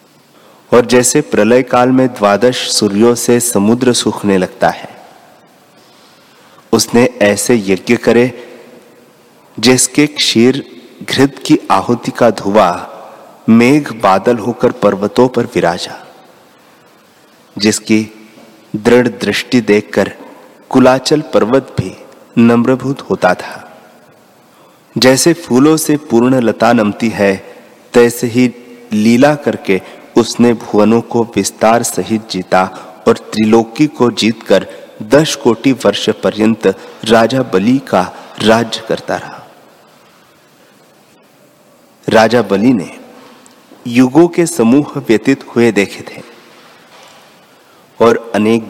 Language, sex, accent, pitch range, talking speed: Hindi, male, native, 110-130 Hz, 100 wpm